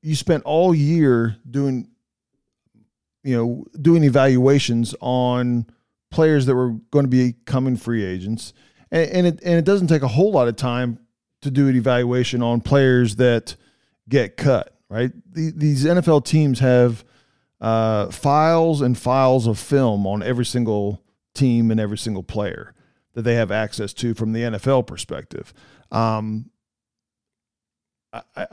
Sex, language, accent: male, English, American